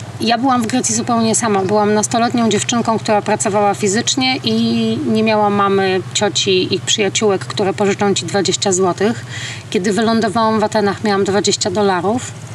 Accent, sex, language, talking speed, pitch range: native, female, Polish, 150 wpm, 170-215 Hz